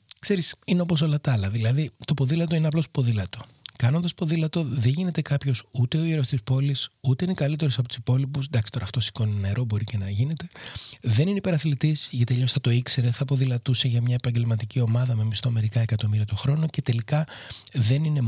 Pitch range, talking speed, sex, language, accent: 115-150 Hz, 205 wpm, male, Greek, native